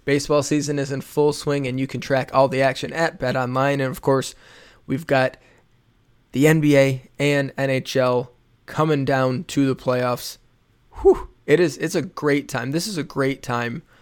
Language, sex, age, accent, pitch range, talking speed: English, male, 20-39, American, 130-150 Hz, 180 wpm